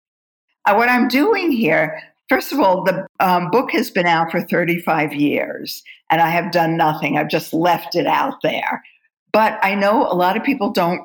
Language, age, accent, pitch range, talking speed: English, 50-69, American, 170-235 Hz, 190 wpm